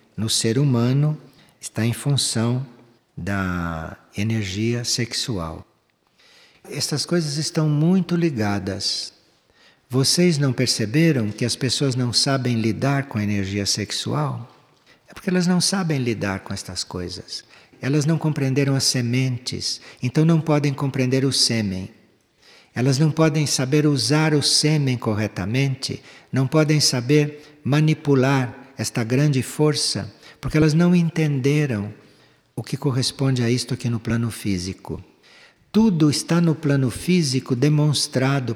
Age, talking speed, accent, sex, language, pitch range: 60-79, 125 wpm, Brazilian, male, Portuguese, 115-150 Hz